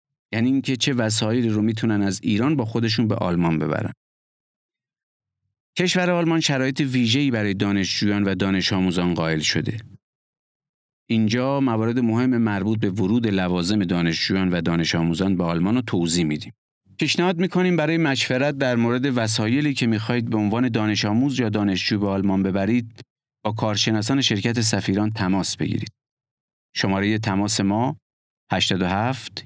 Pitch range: 100-130 Hz